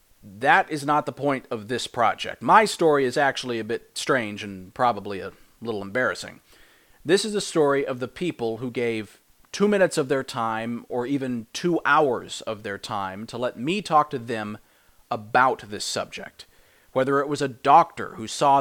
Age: 40-59